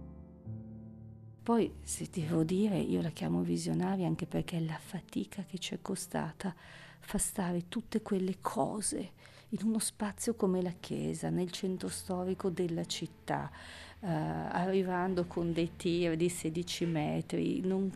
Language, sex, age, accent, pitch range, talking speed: Italian, female, 40-59, native, 160-190 Hz, 140 wpm